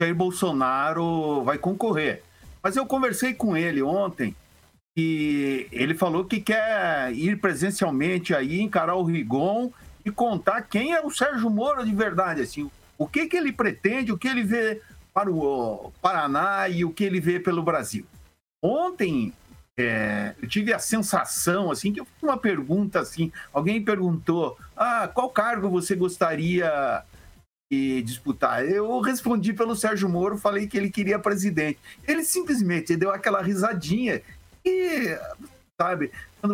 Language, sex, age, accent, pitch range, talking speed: Portuguese, male, 50-69, Brazilian, 160-220 Hz, 150 wpm